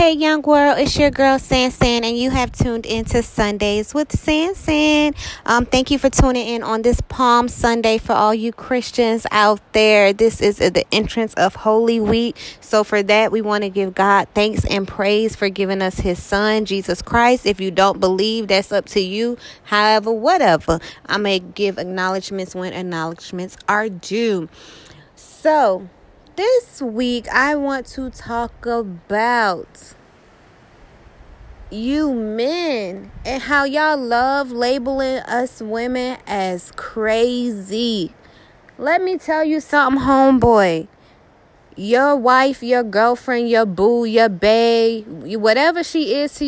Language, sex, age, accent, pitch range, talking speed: English, female, 20-39, American, 205-255 Hz, 145 wpm